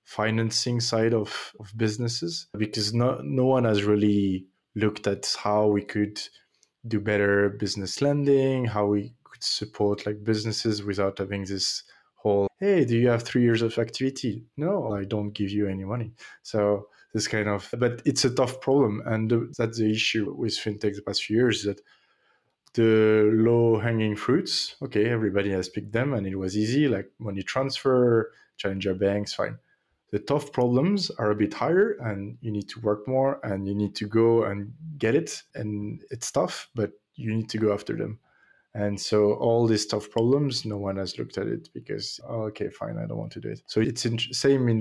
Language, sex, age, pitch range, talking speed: English, male, 20-39, 100-120 Hz, 190 wpm